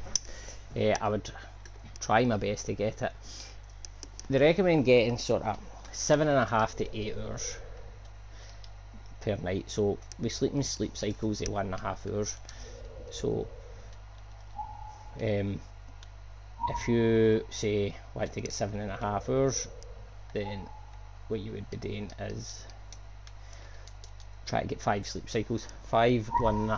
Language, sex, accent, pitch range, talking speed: English, male, British, 100-115 Hz, 115 wpm